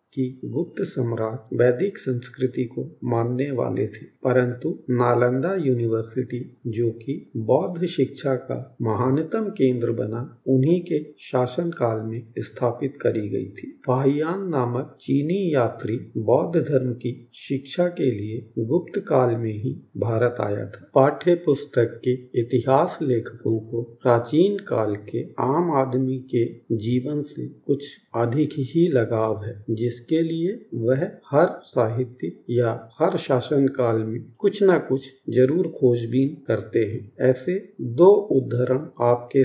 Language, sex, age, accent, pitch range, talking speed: Hindi, male, 50-69, native, 120-155 Hz, 130 wpm